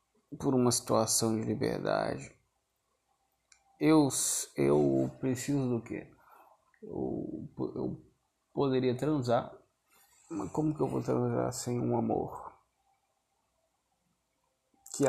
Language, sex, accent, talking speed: Portuguese, male, Brazilian, 95 wpm